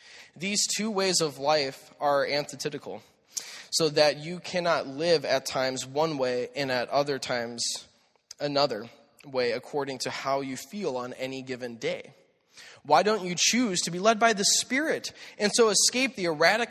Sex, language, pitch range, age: male, English, 140-195 Hz, 20-39